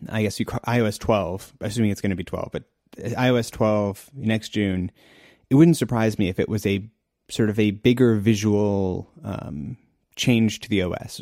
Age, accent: 30-49, American